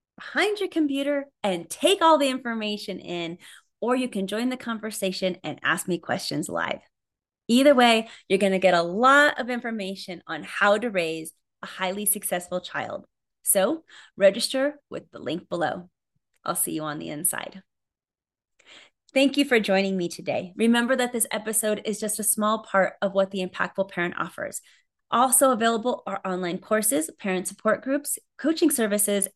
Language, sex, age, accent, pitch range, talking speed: English, female, 30-49, American, 195-265 Hz, 165 wpm